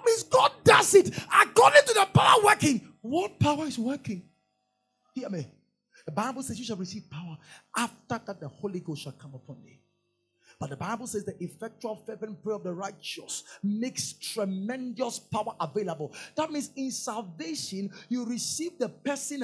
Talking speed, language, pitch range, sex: 170 wpm, English, 180-270 Hz, male